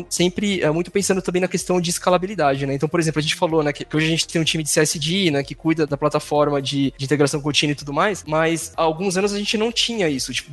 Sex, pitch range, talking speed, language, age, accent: male, 150-180 Hz, 280 wpm, Portuguese, 20-39, Brazilian